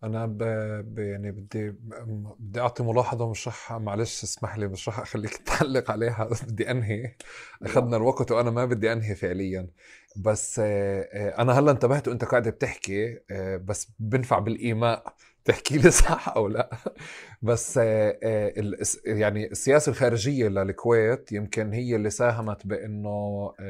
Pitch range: 100-120 Hz